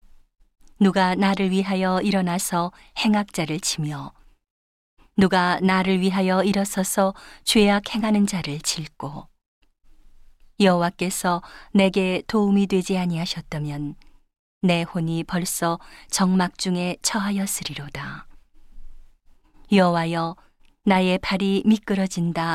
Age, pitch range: 40-59, 175-200 Hz